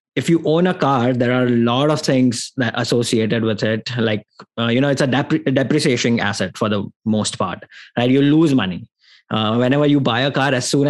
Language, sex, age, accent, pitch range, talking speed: English, male, 20-39, Indian, 110-135 Hz, 225 wpm